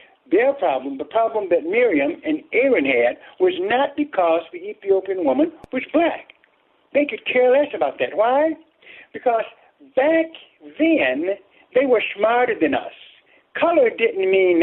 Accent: American